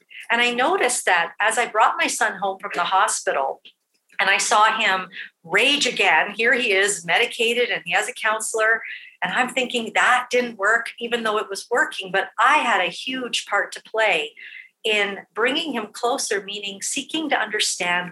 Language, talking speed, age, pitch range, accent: English, 180 wpm, 50-69, 200-265 Hz, American